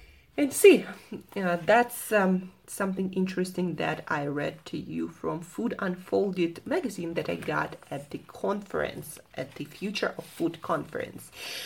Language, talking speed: English, 145 wpm